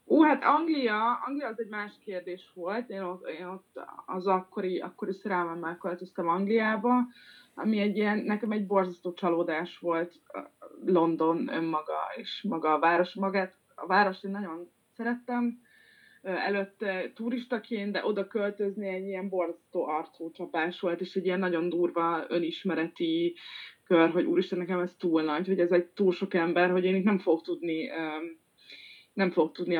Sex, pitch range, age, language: female, 170-205 Hz, 20-39, Hungarian